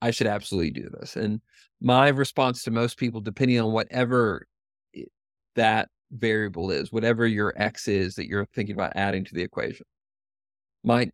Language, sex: English, male